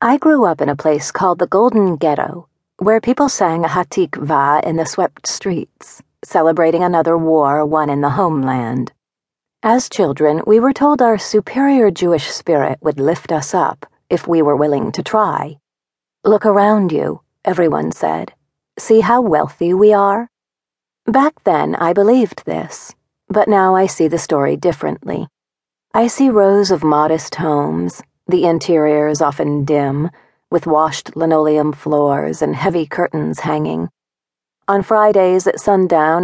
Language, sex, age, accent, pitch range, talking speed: English, female, 40-59, American, 150-200 Hz, 150 wpm